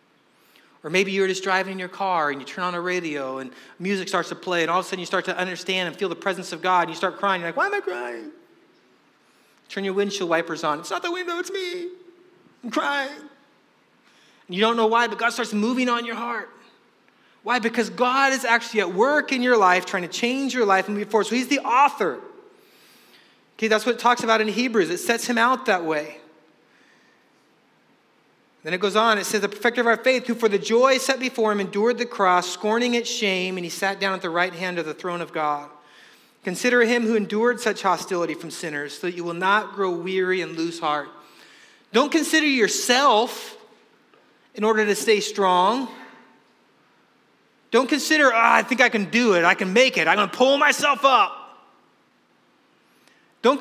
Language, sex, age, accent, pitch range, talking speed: English, male, 30-49, American, 185-255 Hz, 210 wpm